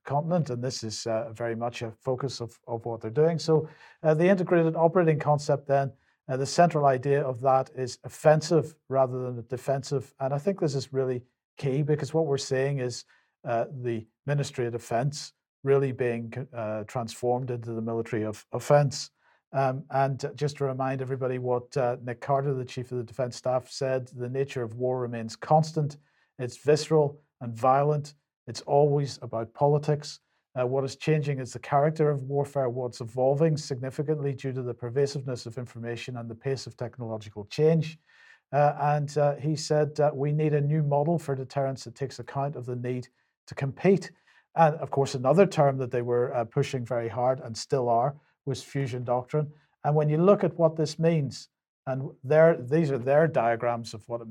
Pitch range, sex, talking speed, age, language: 125-145 Hz, male, 185 wpm, 50-69, English